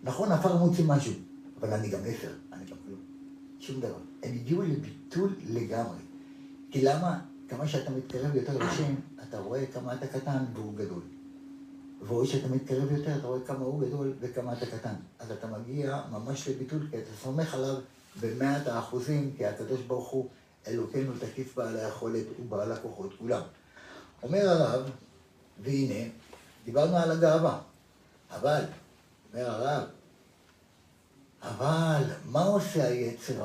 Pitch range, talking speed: 120-155 Hz, 140 wpm